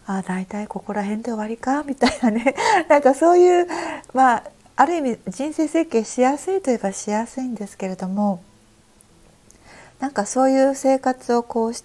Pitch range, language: 200-270 Hz, Japanese